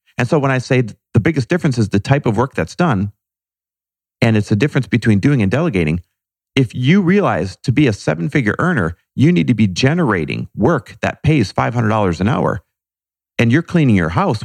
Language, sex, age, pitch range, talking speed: English, male, 40-59, 105-160 Hz, 195 wpm